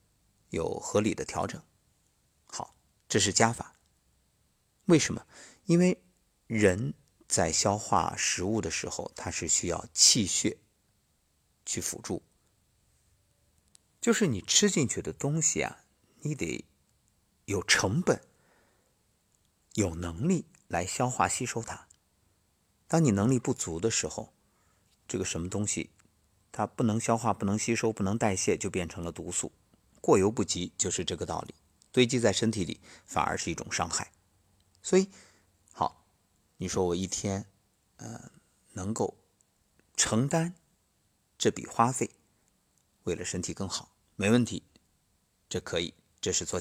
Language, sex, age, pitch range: Chinese, male, 50-69, 95-125 Hz